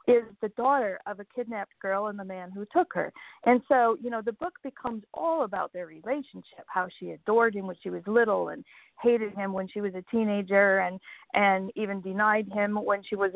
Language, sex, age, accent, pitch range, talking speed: English, female, 50-69, American, 195-240 Hz, 215 wpm